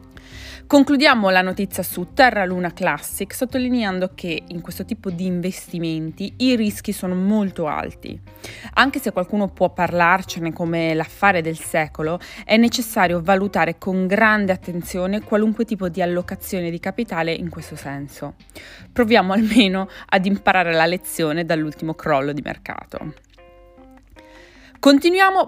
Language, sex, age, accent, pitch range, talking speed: Italian, female, 20-39, native, 165-240 Hz, 125 wpm